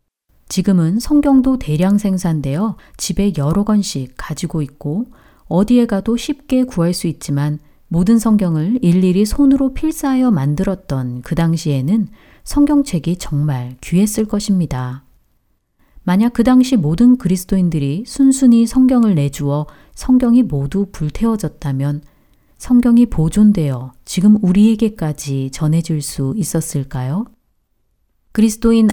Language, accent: Korean, native